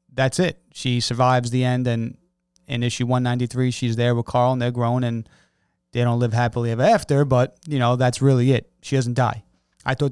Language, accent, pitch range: English, American, 115-145 Hz